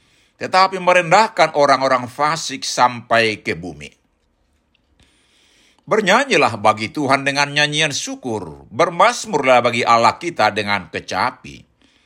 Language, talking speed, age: Indonesian, 95 wpm, 50-69